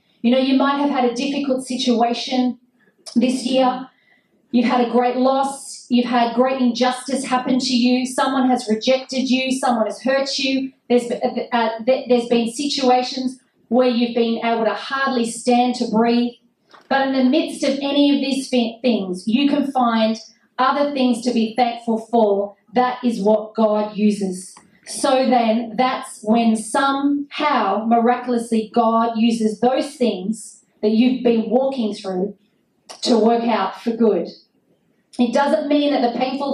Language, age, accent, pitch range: English, 40-59, Australian, 220-255 Hz